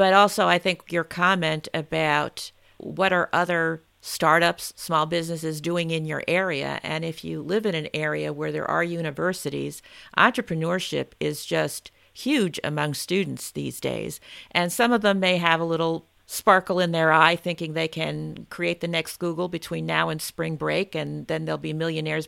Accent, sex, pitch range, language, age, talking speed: American, female, 160-205 Hz, English, 50-69, 175 wpm